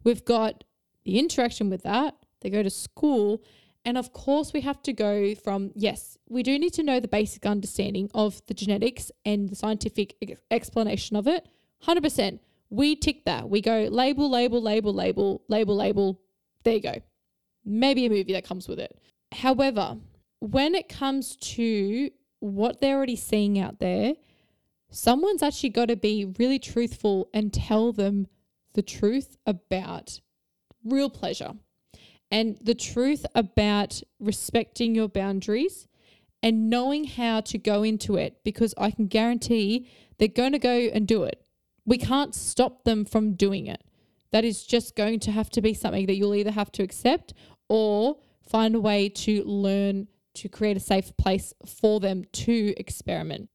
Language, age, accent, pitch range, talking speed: English, 20-39, Australian, 205-250 Hz, 165 wpm